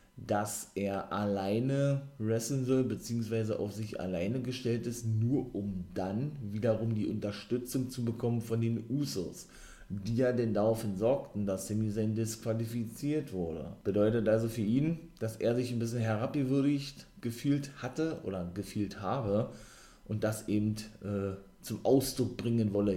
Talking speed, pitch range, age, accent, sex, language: 140 wpm, 100-120 Hz, 30-49, German, male, German